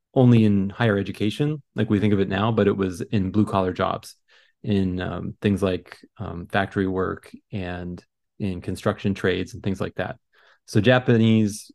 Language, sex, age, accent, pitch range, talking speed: English, male, 30-49, American, 100-115 Hz, 175 wpm